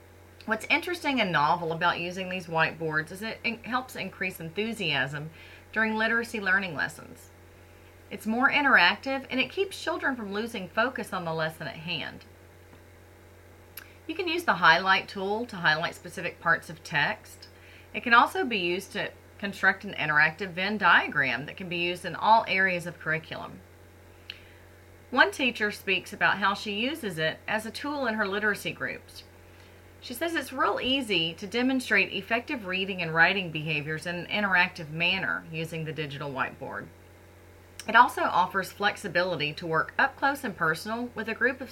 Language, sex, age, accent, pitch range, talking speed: English, female, 30-49, American, 155-225 Hz, 165 wpm